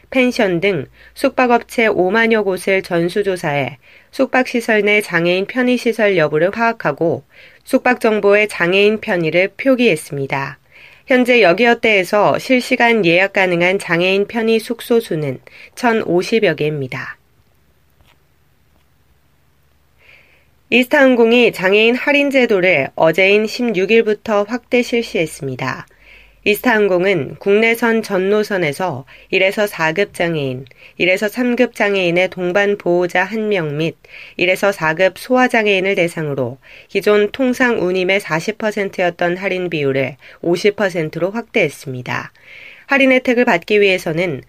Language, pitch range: Korean, 170-225 Hz